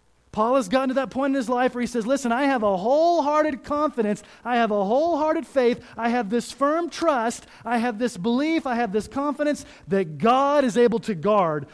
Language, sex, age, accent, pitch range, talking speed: English, male, 30-49, American, 155-265 Hz, 215 wpm